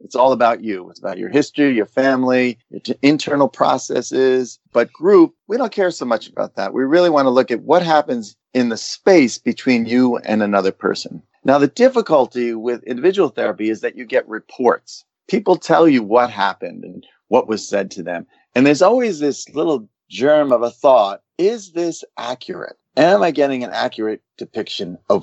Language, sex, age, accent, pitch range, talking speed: English, male, 40-59, American, 120-175 Hz, 190 wpm